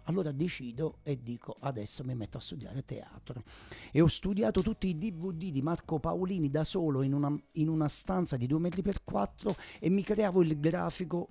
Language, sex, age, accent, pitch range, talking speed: Italian, male, 50-69, native, 125-160 Hz, 190 wpm